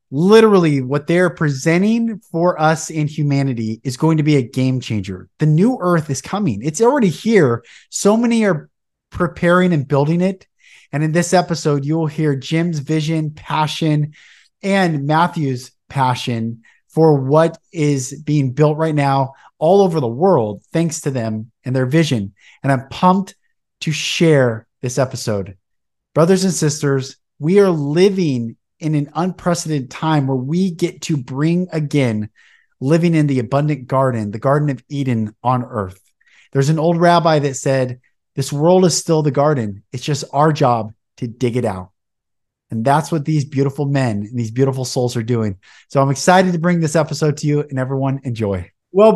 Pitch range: 130-170 Hz